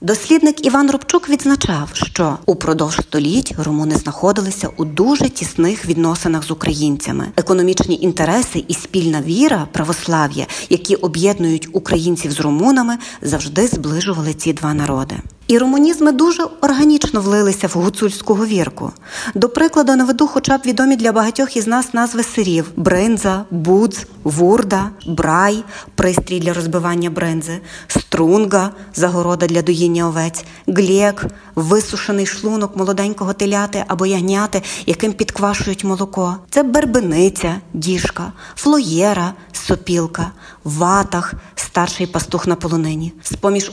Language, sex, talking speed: Ukrainian, female, 130 wpm